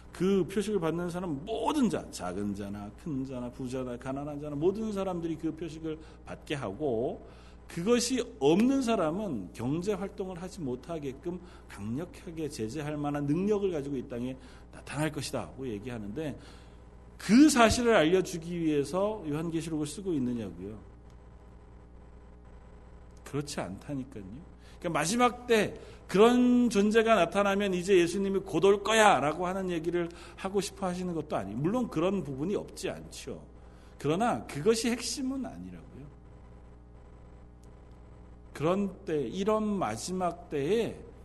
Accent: native